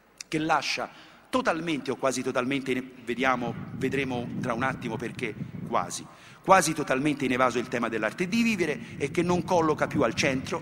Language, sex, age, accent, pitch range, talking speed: Italian, male, 50-69, native, 135-180 Hz, 165 wpm